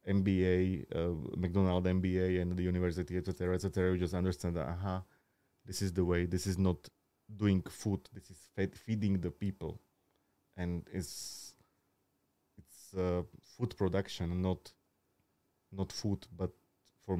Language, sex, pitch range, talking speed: Slovak, male, 90-100 Hz, 145 wpm